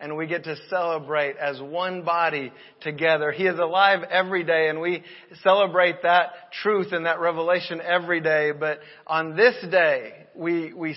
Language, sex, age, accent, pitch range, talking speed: English, male, 40-59, American, 160-185 Hz, 165 wpm